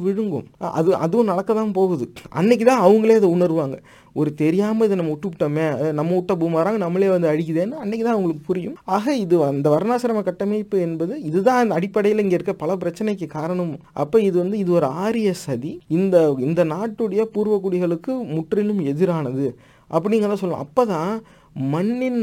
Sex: male